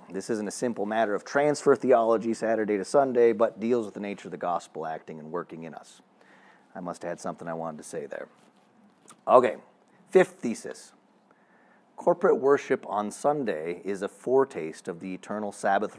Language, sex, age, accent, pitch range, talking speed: English, male, 40-59, American, 105-140 Hz, 180 wpm